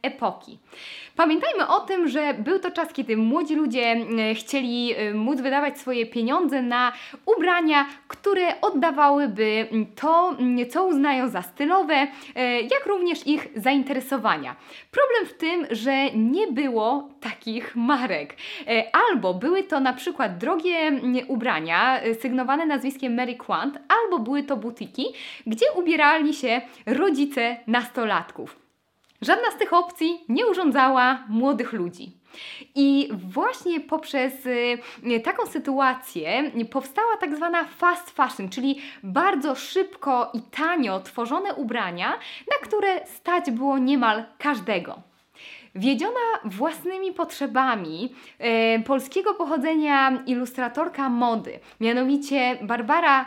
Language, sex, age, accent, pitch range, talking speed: Polish, female, 20-39, native, 240-320 Hz, 110 wpm